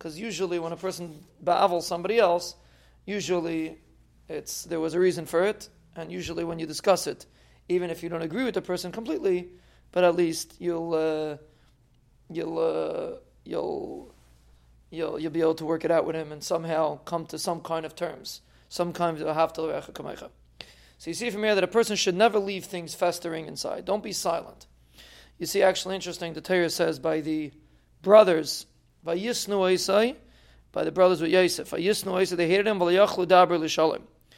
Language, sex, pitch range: English, male, 160-190 Hz